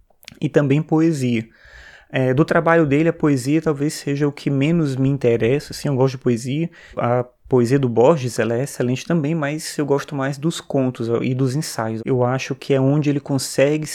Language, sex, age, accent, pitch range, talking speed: Portuguese, male, 20-39, Brazilian, 125-145 Hz, 195 wpm